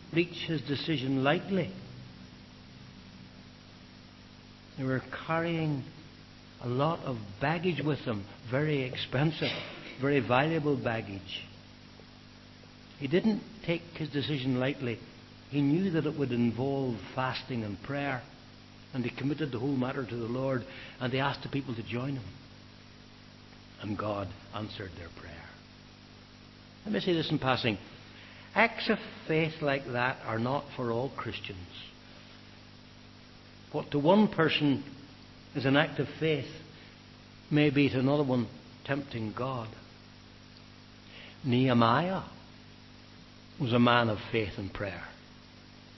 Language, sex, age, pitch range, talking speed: English, male, 60-79, 110-140 Hz, 125 wpm